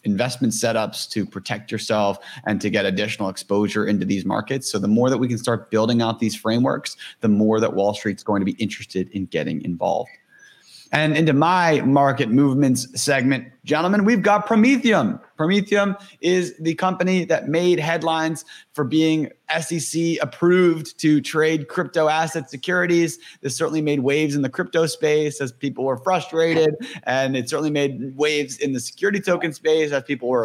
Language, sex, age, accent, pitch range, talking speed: English, male, 30-49, American, 125-160 Hz, 170 wpm